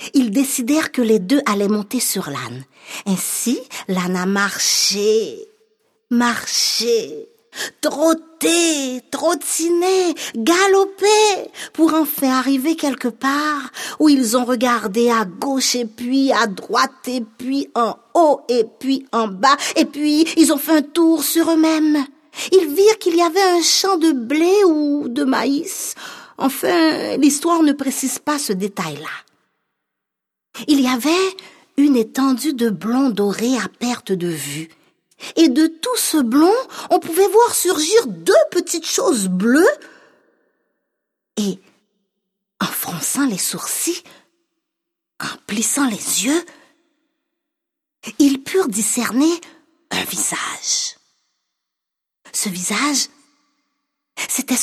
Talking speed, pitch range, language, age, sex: 120 wpm, 240-330 Hz, French, 50-69, female